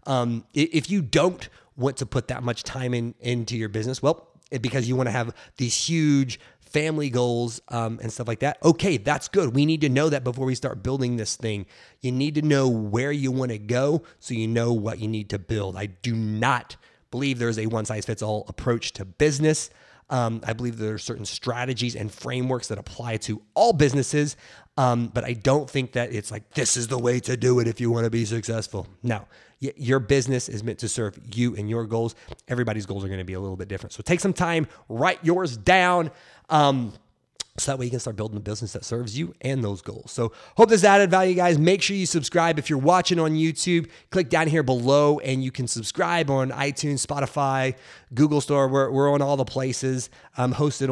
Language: English